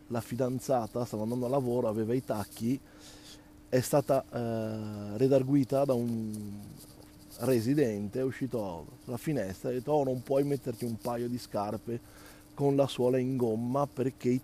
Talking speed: 160 wpm